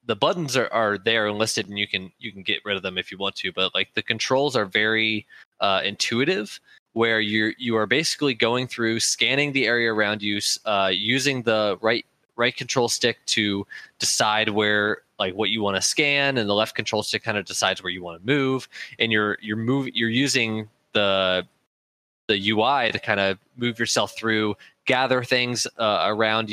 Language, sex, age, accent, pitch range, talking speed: English, male, 20-39, American, 100-115 Hz, 200 wpm